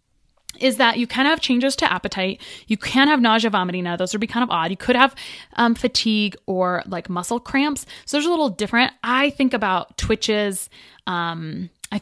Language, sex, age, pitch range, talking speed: English, female, 20-39, 185-245 Hz, 200 wpm